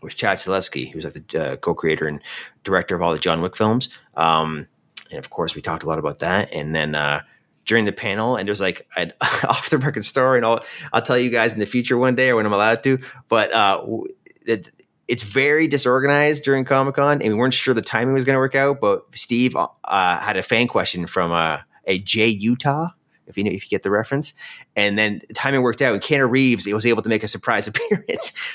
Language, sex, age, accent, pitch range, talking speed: English, male, 30-49, American, 90-130 Hz, 235 wpm